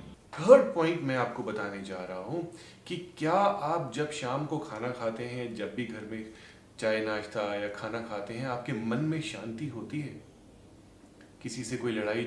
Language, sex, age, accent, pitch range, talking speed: Hindi, male, 30-49, native, 110-140 Hz, 125 wpm